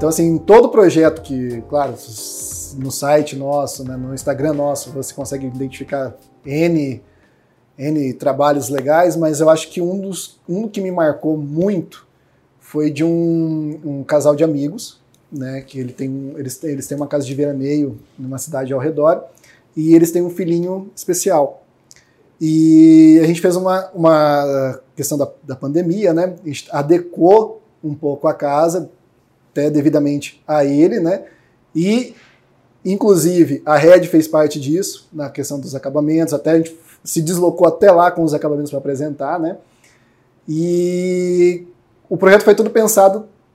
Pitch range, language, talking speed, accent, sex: 140-175 Hz, Portuguese, 155 wpm, Brazilian, male